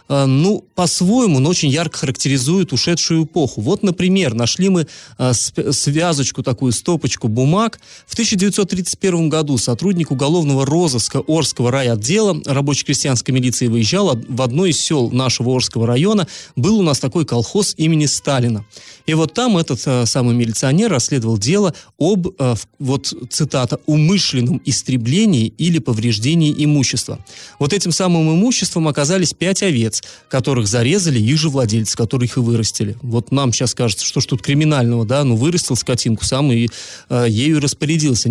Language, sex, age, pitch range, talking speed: Russian, male, 30-49, 125-170 Hz, 145 wpm